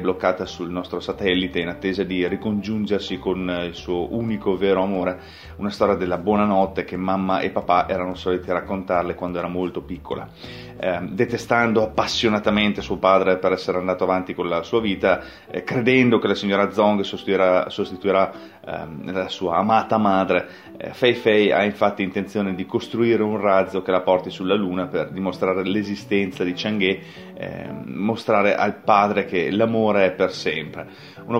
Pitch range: 90-110 Hz